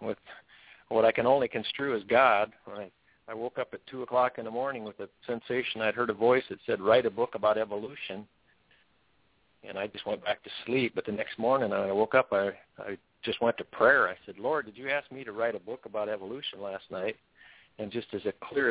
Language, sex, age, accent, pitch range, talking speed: English, male, 50-69, American, 105-125 Hz, 230 wpm